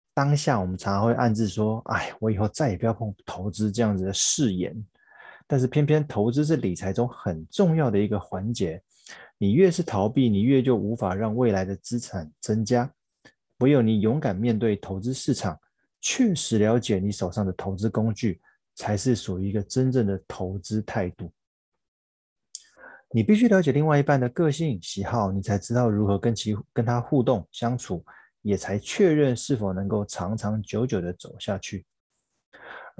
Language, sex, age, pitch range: Chinese, male, 20-39, 100-130 Hz